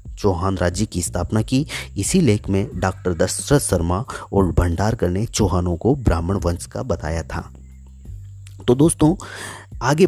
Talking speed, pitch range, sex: 125 wpm, 85-110 Hz, male